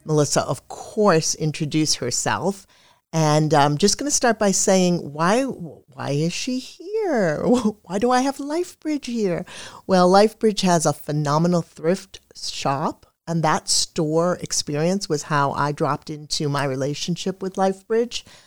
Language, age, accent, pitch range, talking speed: English, 50-69, American, 150-185 Hz, 145 wpm